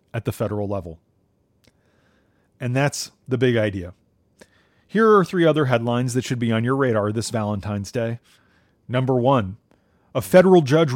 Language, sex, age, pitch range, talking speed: English, male, 40-59, 115-150 Hz, 155 wpm